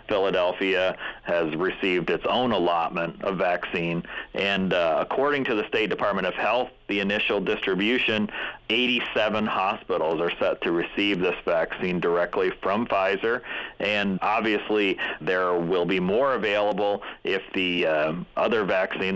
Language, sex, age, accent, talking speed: English, male, 40-59, American, 135 wpm